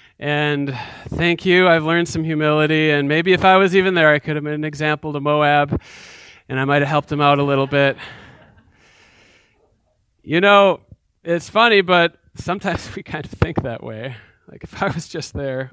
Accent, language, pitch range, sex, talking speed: American, English, 135-175 Hz, male, 190 wpm